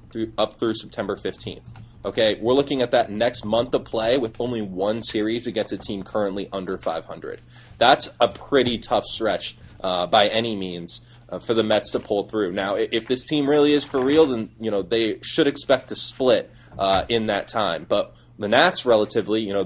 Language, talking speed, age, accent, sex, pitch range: English, 205 wpm, 20-39, American, male, 100-120 Hz